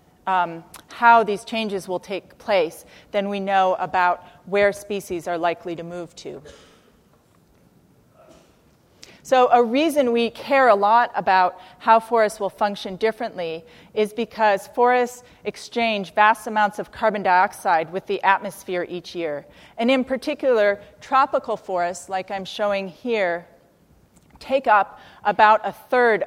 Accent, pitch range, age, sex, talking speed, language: American, 185-225 Hz, 30-49, female, 135 wpm, English